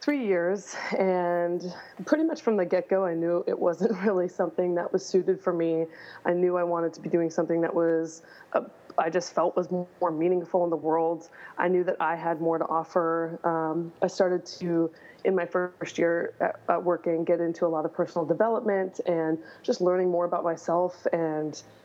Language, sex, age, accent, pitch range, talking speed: English, female, 20-39, American, 170-185 Hz, 200 wpm